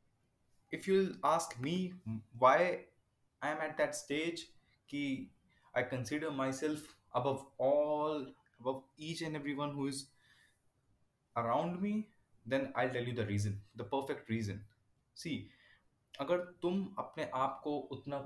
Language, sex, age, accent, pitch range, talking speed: Hindi, male, 20-39, native, 120-155 Hz, 130 wpm